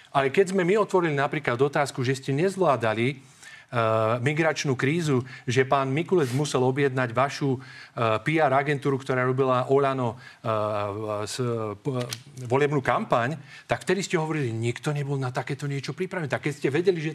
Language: Slovak